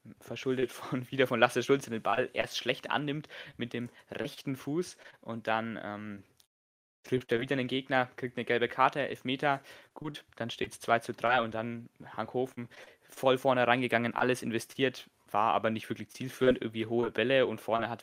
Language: German